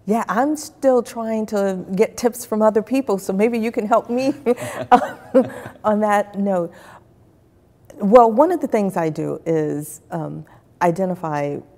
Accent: American